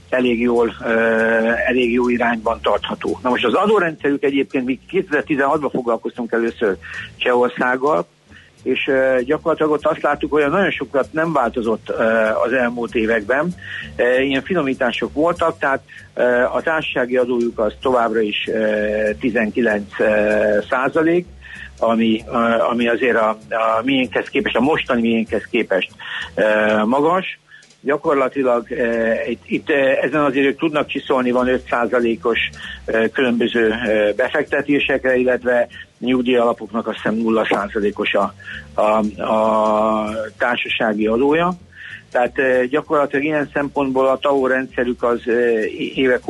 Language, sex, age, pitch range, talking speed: Hungarian, male, 60-79, 115-135 Hz, 110 wpm